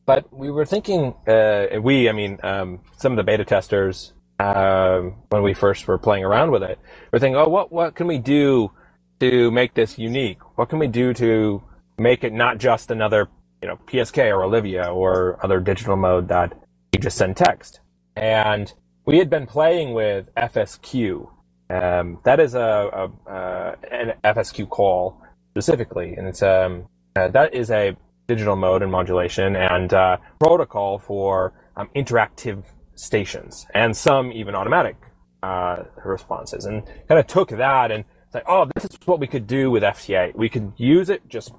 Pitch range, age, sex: 90-120 Hz, 30-49, male